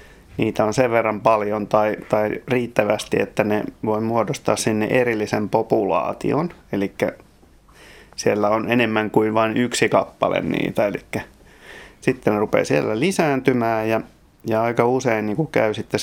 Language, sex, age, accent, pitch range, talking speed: Finnish, male, 30-49, native, 110-125 Hz, 135 wpm